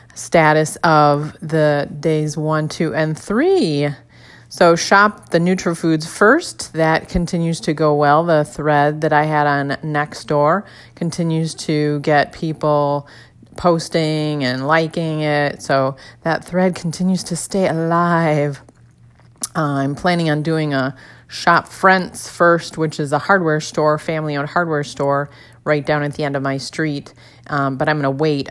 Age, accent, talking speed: 30-49, American, 150 wpm